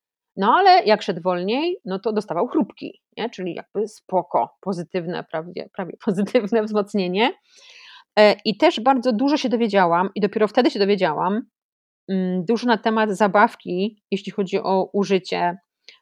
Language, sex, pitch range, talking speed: Polish, female, 185-230 Hz, 135 wpm